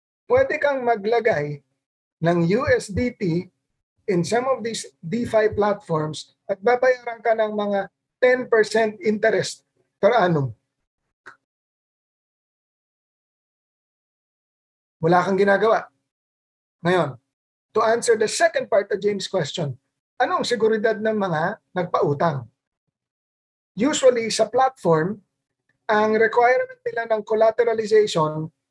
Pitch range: 155-230 Hz